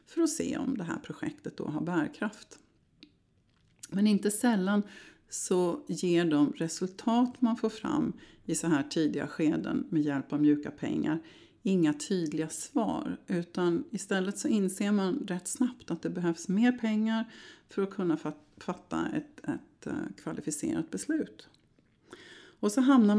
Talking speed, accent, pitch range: 145 wpm, native, 160-230 Hz